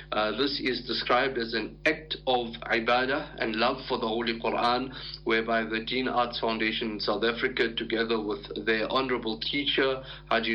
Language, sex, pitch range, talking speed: English, male, 115-130 Hz, 165 wpm